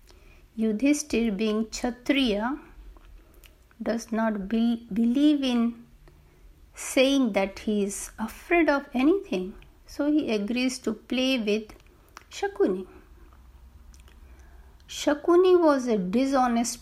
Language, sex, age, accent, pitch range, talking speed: Hindi, female, 60-79, native, 195-280 Hz, 95 wpm